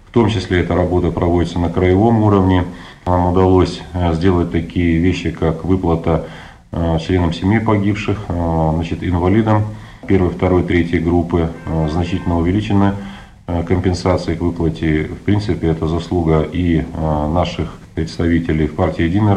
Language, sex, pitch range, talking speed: Russian, male, 80-95 Hz, 125 wpm